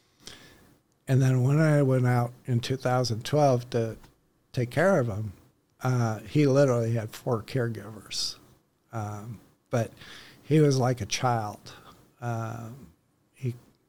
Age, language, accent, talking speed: 50-69, English, American, 120 wpm